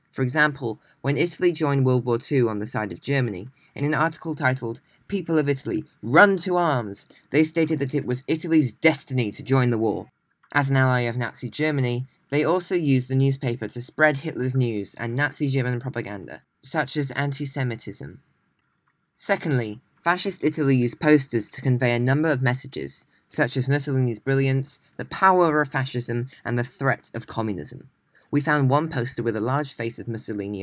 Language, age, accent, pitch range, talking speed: English, 20-39, British, 120-150 Hz, 175 wpm